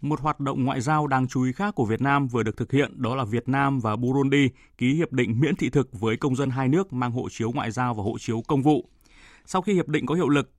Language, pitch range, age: Vietnamese, 120-150 Hz, 20-39